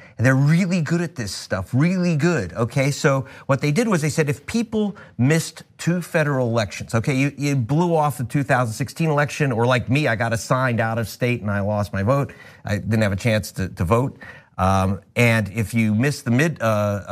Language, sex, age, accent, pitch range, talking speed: English, male, 50-69, American, 115-155 Hz, 215 wpm